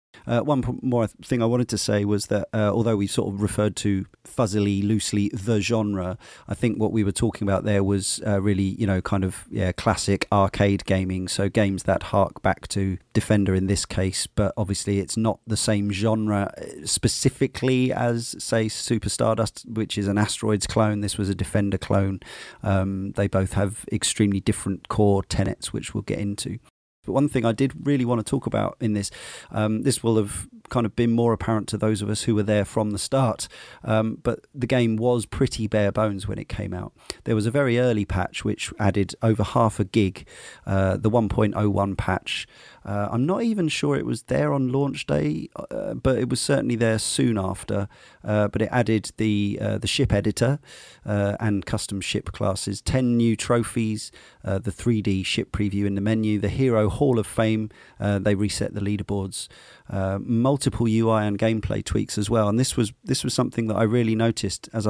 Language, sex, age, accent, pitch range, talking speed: English, male, 30-49, British, 100-115 Hz, 200 wpm